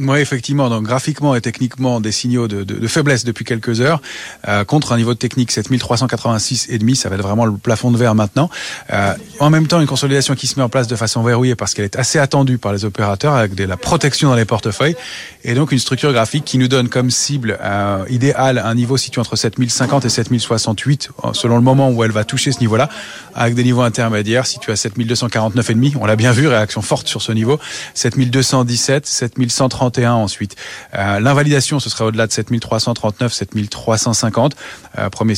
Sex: male